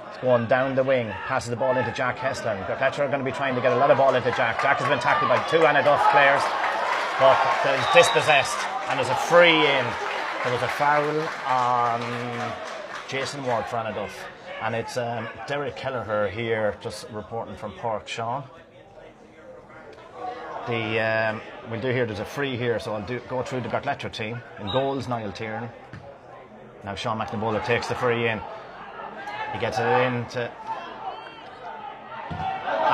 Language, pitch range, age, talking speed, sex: English, 115-150 Hz, 30-49, 175 wpm, male